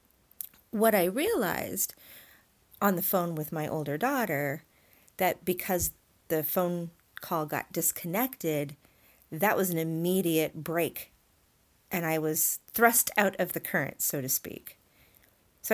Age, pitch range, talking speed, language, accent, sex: 40-59, 155-200 Hz, 130 wpm, English, American, female